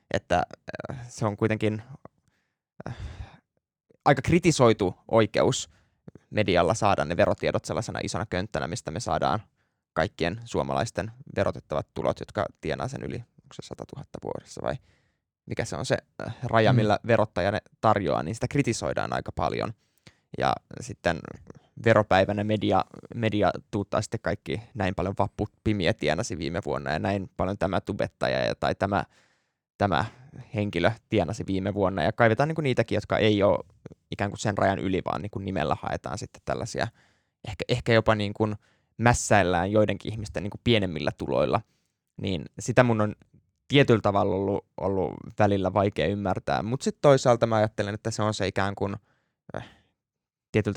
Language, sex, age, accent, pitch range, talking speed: Finnish, male, 20-39, native, 100-115 Hz, 145 wpm